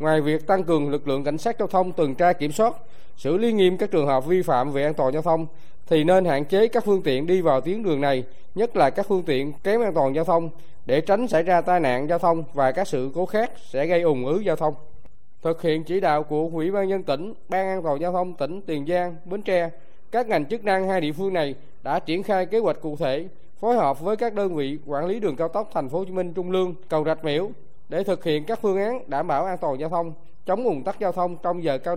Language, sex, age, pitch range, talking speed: Vietnamese, male, 20-39, 155-195 Hz, 270 wpm